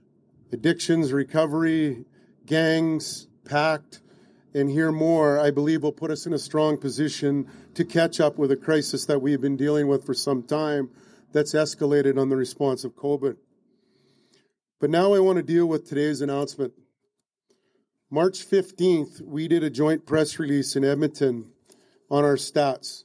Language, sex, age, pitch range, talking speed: English, male, 40-59, 140-165 Hz, 155 wpm